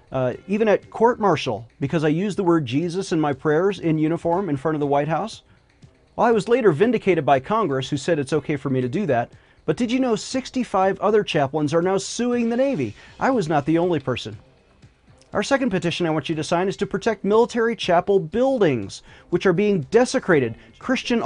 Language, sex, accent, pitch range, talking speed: English, male, American, 140-200 Hz, 205 wpm